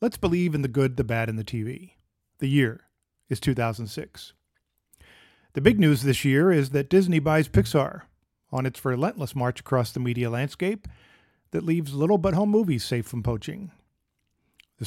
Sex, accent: male, American